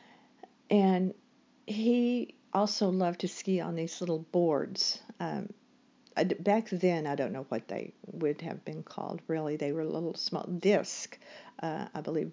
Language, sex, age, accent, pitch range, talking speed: English, female, 50-69, American, 170-230 Hz, 155 wpm